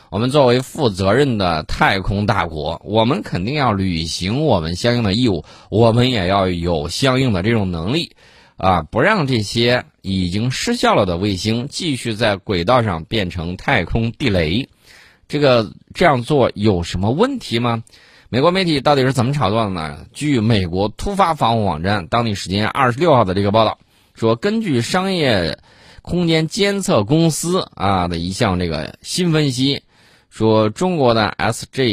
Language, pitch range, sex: Chinese, 95-130 Hz, male